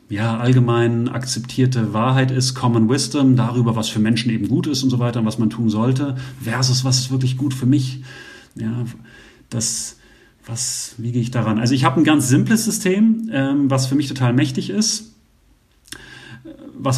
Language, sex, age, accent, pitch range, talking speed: German, male, 40-59, German, 115-145 Hz, 175 wpm